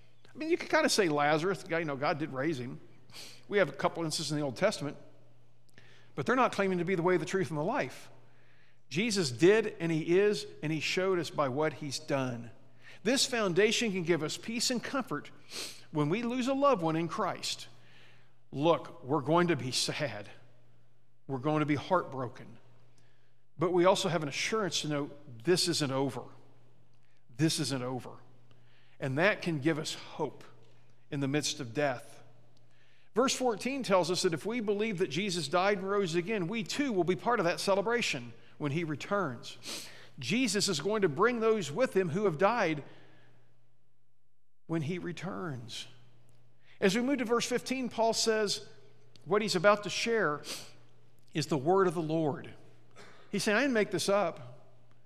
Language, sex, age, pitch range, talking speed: English, male, 50-69, 125-200 Hz, 185 wpm